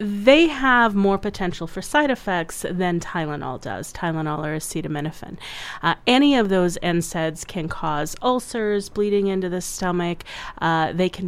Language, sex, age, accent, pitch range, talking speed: English, female, 30-49, American, 160-195 Hz, 150 wpm